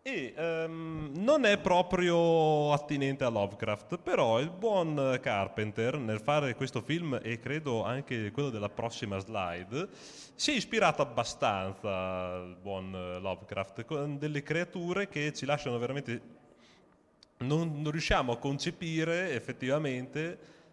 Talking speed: 125 wpm